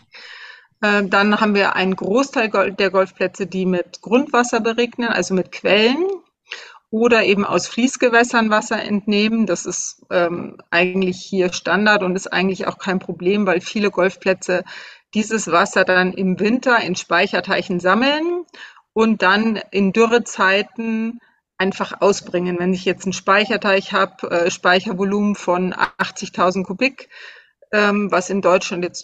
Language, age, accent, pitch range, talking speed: German, 40-59, German, 185-225 Hz, 130 wpm